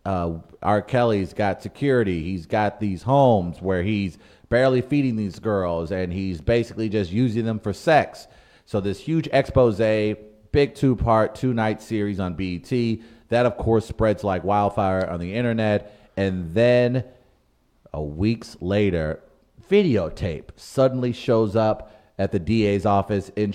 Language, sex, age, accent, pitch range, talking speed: English, male, 30-49, American, 95-115 Hz, 140 wpm